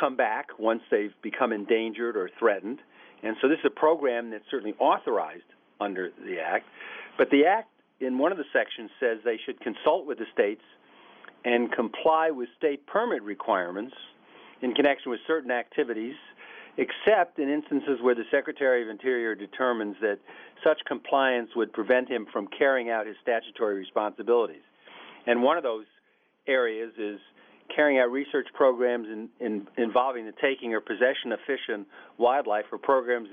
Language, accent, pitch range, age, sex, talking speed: English, American, 115-145 Hz, 50-69, male, 160 wpm